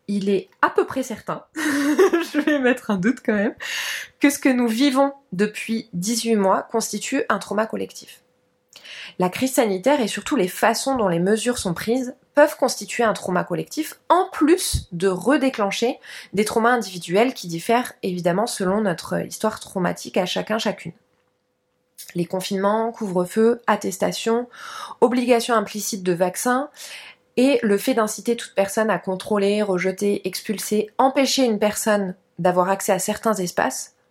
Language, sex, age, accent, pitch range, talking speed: French, female, 20-39, French, 190-250 Hz, 150 wpm